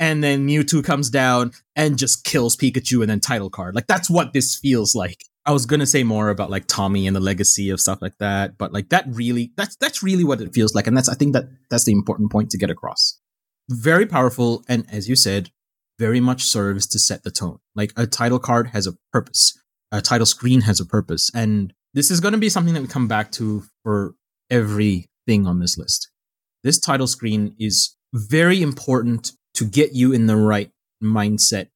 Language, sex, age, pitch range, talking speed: English, male, 30-49, 105-140 Hz, 215 wpm